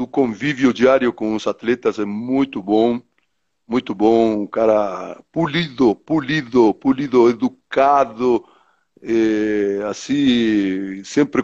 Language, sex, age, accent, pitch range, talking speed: Portuguese, male, 60-79, Brazilian, 105-140 Hz, 105 wpm